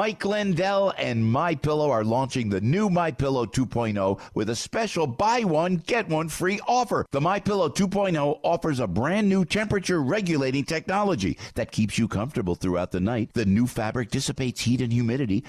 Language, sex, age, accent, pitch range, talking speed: English, male, 50-69, American, 120-175 Hz, 165 wpm